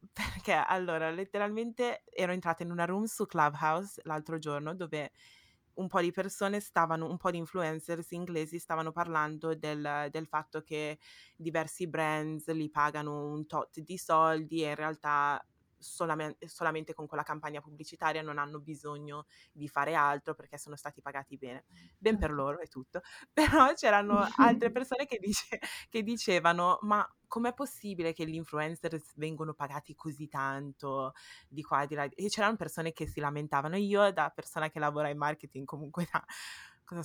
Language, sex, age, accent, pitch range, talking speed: Italian, female, 20-39, native, 150-190 Hz, 160 wpm